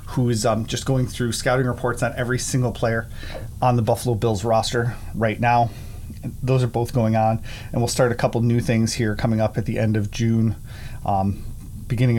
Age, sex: 30-49, male